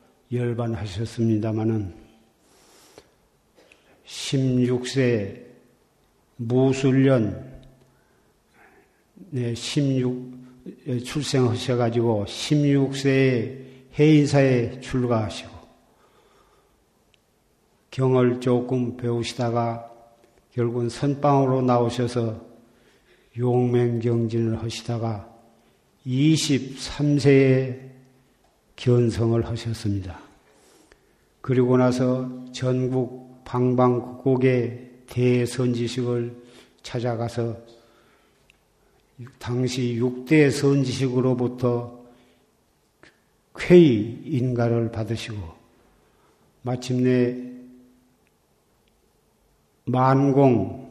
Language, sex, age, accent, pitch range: Korean, male, 40-59, native, 115-130 Hz